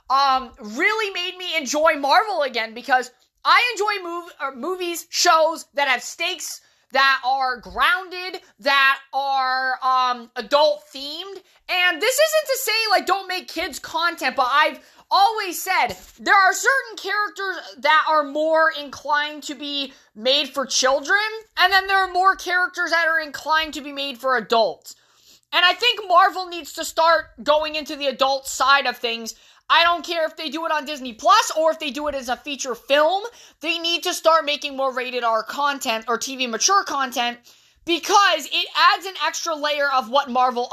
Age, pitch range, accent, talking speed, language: 30-49, 270-355 Hz, American, 175 wpm, English